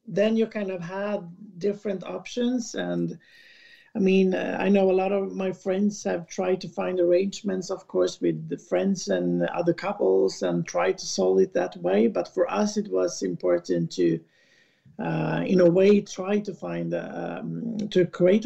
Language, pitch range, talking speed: English, 160-200 Hz, 180 wpm